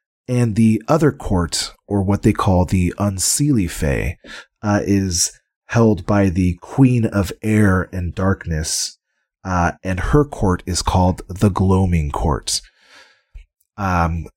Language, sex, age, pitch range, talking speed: English, male, 30-49, 85-110 Hz, 130 wpm